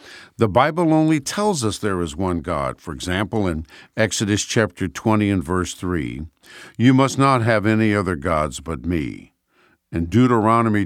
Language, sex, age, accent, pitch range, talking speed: English, male, 60-79, American, 85-120 Hz, 160 wpm